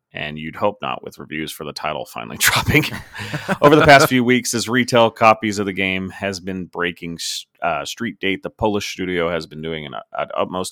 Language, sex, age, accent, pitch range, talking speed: English, male, 30-49, American, 85-115 Hz, 205 wpm